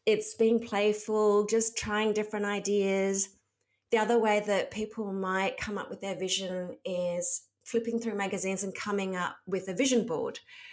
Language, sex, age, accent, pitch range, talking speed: English, female, 30-49, Australian, 180-220 Hz, 160 wpm